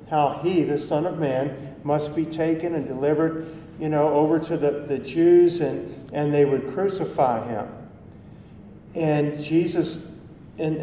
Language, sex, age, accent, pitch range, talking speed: English, male, 50-69, American, 140-165 Hz, 150 wpm